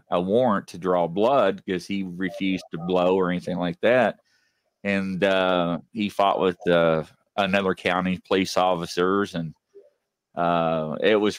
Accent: American